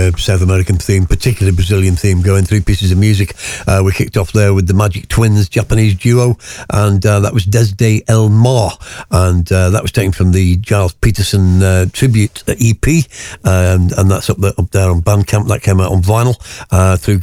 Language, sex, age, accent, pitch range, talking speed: English, male, 50-69, British, 95-110 Hz, 200 wpm